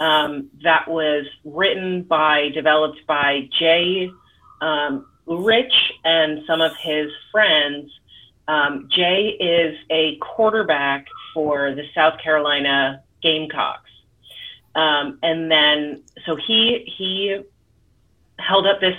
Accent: American